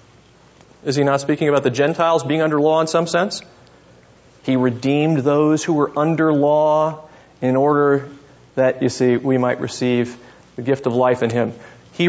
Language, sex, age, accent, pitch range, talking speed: English, male, 40-59, American, 130-190 Hz, 175 wpm